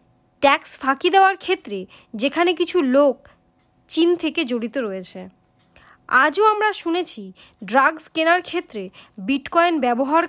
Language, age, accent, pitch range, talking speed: Bengali, 30-49, native, 235-335 Hz, 110 wpm